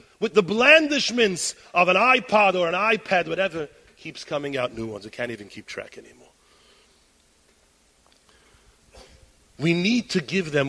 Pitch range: 160-245 Hz